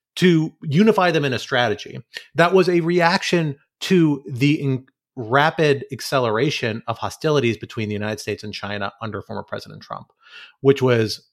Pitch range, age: 110-150 Hz, 30-49